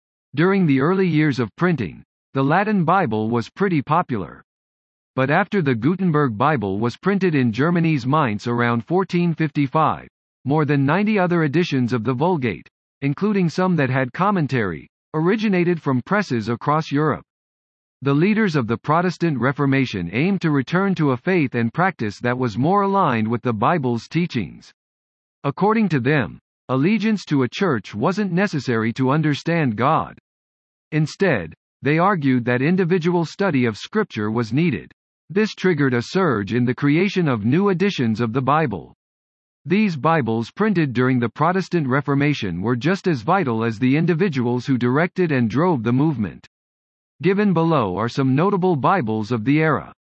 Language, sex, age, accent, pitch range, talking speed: English, male, 50-69, American, 120-175 Hz, 155 wpm